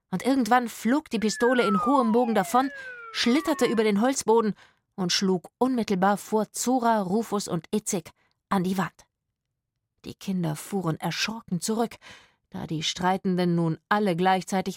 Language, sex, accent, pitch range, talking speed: German, female, German, 170-225 Hz, 140 wpm